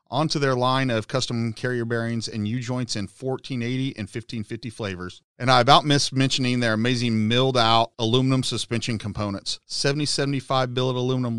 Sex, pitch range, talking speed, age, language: male, 115-140 Hz, 150 wpm, 40-59, English